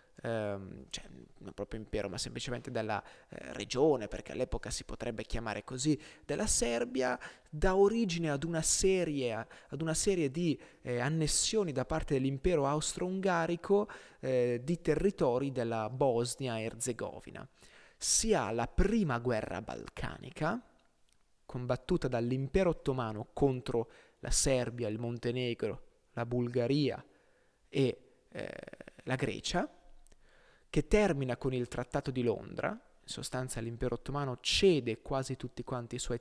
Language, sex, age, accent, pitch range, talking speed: Italian, male, 20-39, native, 125-170 Hz, 125 wpm